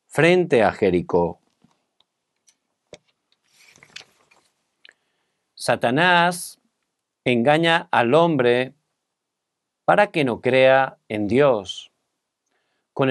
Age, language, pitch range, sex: 50-69, Korean, 130-175 Hz, male